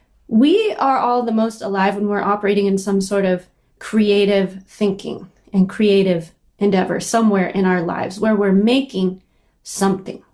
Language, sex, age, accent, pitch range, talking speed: English, female, 20-39, American, 195-235 Hz, 150 wpm